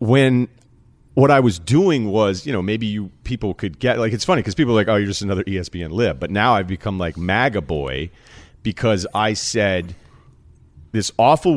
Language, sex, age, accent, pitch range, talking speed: English, male, 40-59, American, 100-140 Hz, 190 wpm